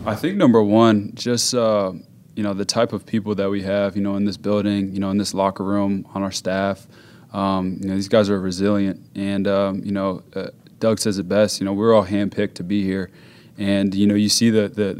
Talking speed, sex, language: 240 wpm, male, English